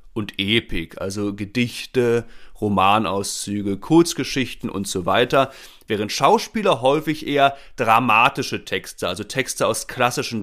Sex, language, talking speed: male, German, 110 wpm